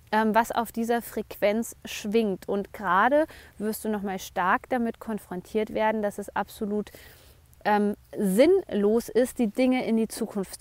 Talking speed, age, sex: 140 wpm, 20-39, female